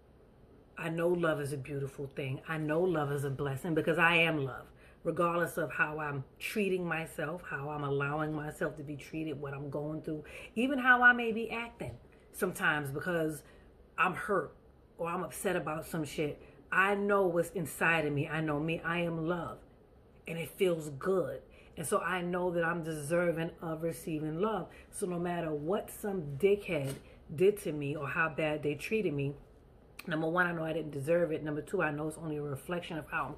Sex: female